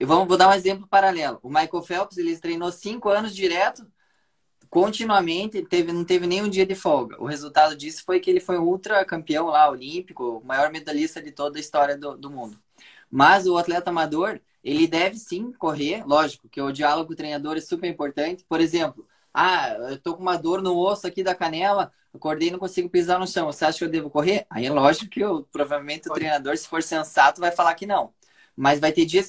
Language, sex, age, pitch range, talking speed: Portuguese, male, 20-39, 160-195 Hz, 215 wpm